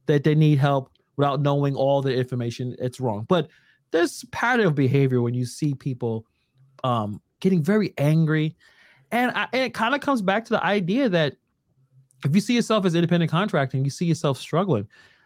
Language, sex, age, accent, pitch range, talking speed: English, male, 30-49, American, 130-190 Hz, 185 wpm